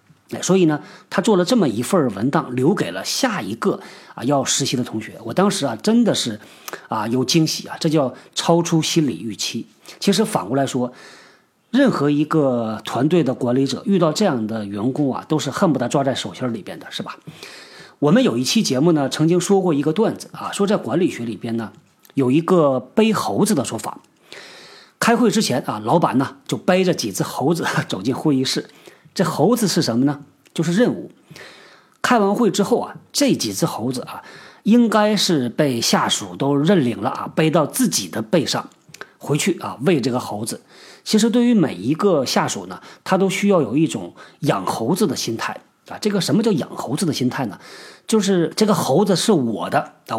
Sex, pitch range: male, 135-205 Hz